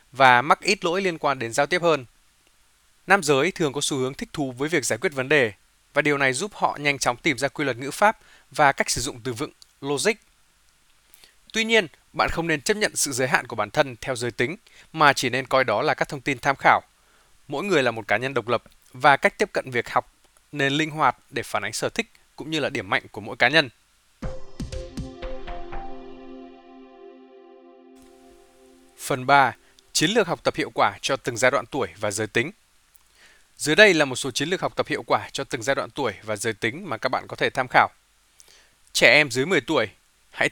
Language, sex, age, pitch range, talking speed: Vietnamese, male, 20-39, 120-155 Hz, 220 wpm